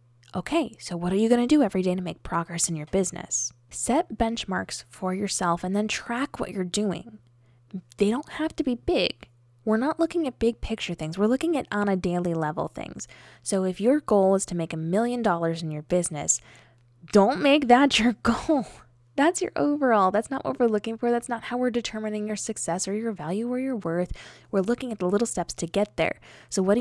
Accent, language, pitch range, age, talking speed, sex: American, English, 170-235 Hz, 10-29, 220 wpm, female